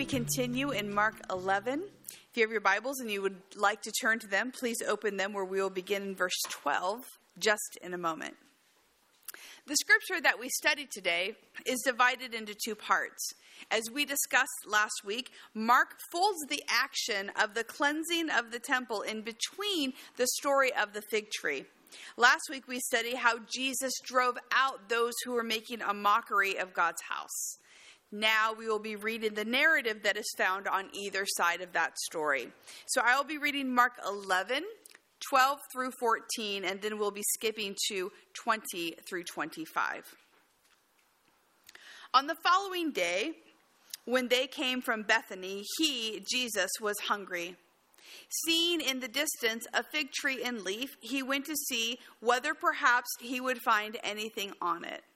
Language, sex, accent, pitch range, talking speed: English, female, American, 210-270 Hz, 165 wpm